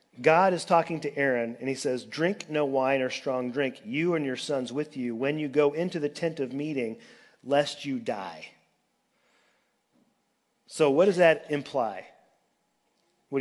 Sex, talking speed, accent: male, 165 wpm, American